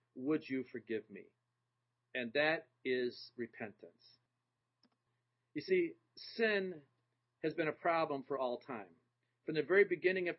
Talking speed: 135 wpm